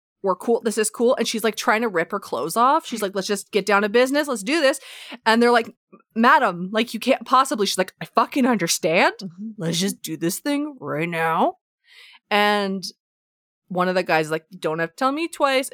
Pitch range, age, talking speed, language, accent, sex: 185-265 Hz, 20-39, 215 wpm, English, American, female